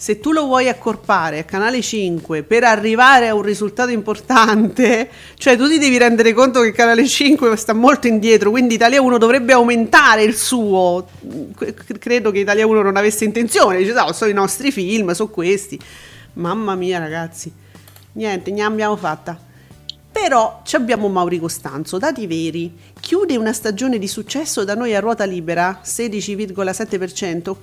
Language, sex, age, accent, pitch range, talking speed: Italian, female, 40-59, native, 195-250 Hz, 160 wpm